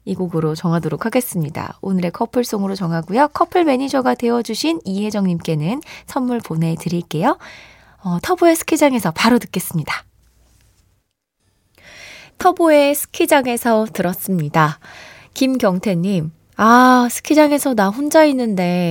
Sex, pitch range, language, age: female, 185-260 Hz, Korean, 20-39